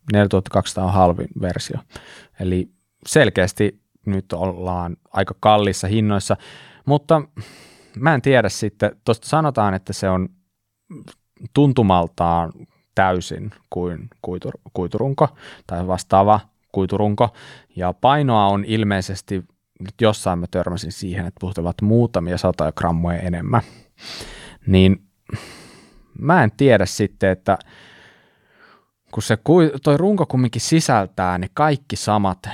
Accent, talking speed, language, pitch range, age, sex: native, 105 wpm, Finnish, 95-110 Hz, 20-39, male